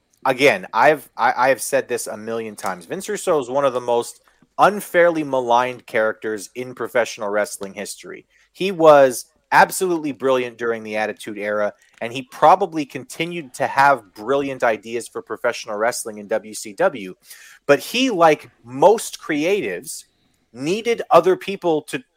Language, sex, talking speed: English, male, 150 wpm